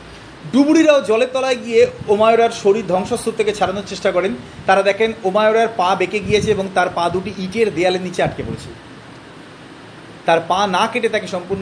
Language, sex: Bengali, male